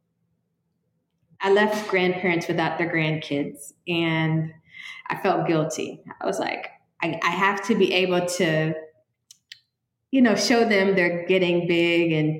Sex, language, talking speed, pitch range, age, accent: female, English, 135 wpm, 160-200 Hz, 20-39, American